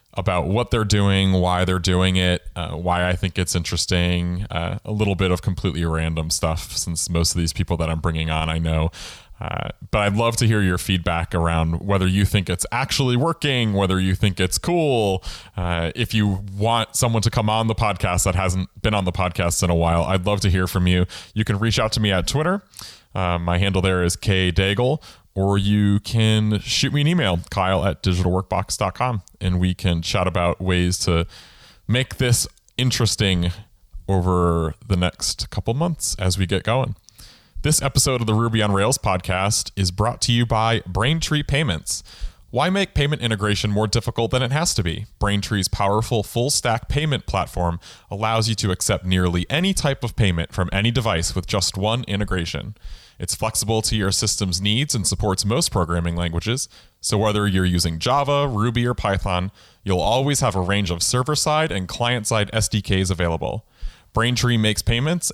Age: 20-39